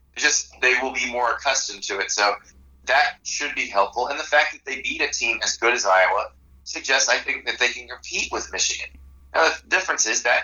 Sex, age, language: male, 30-49, English